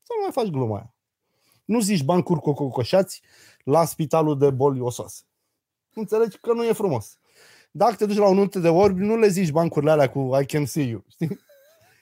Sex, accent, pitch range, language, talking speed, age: male, native, 130-190 Hz, Romanian, 185 wpm, 30-49